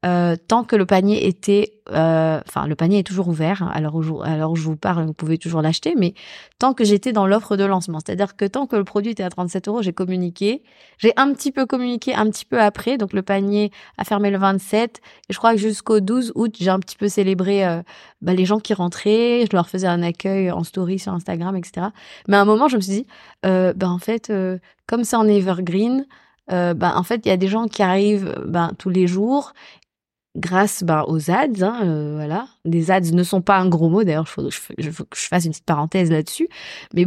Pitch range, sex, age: 180-215 Hz, female, 20-39